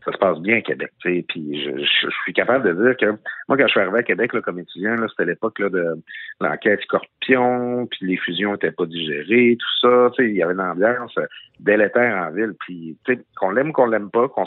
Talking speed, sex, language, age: 230 wpm, male, French, 50-69